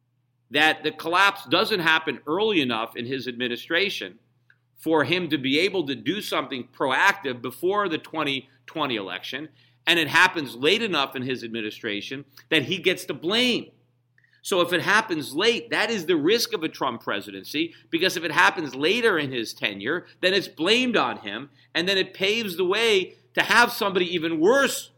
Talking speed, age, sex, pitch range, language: 175 wpm, 50-69, male, 145-210 Hz, English